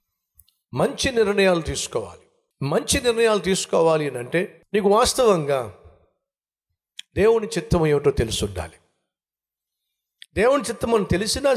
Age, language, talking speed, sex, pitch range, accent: 60-79, Telugu, 90 wpm, male, 105-170 Hz, native